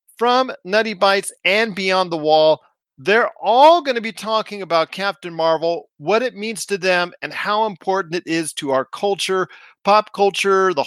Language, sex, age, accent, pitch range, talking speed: English, male, 40-59, American, 155-205 Hz, 175 wpm